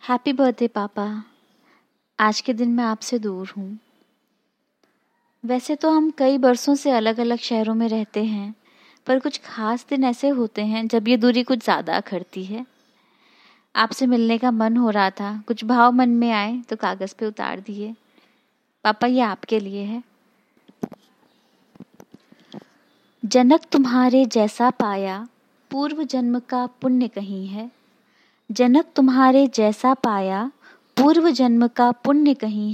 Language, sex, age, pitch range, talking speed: Hindi, female, 20-39, 215-260 Hz, 140 wpm